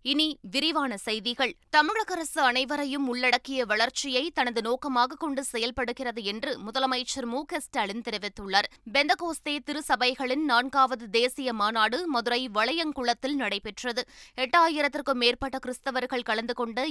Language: Tamil